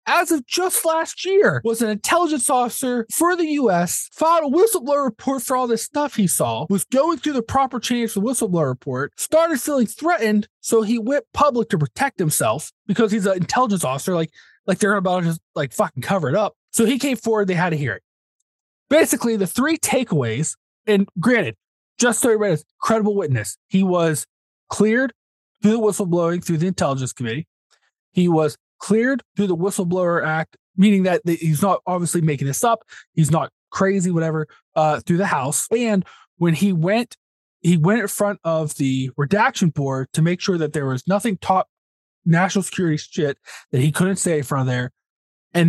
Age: 20-39